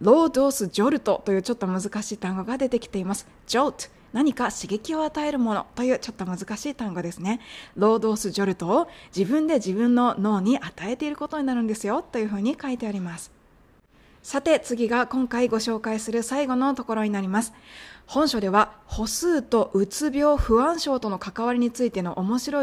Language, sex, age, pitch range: Japanese, female, 20-39, 195-255 Hz